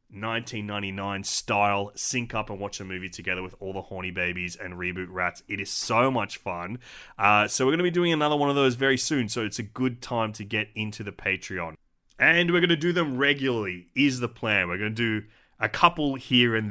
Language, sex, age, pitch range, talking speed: English, male, 30-49, 100-130 Hz, 215 wpm